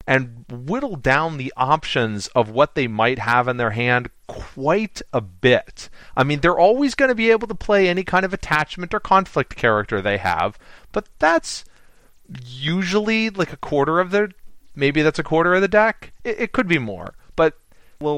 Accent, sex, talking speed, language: American, male, 190 wpm, English